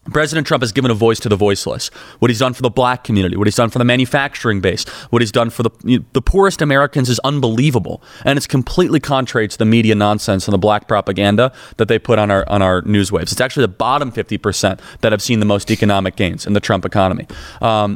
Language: English